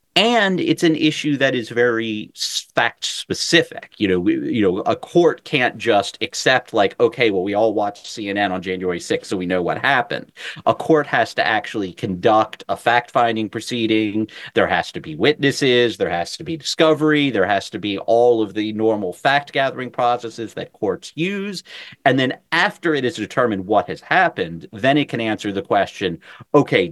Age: 30-49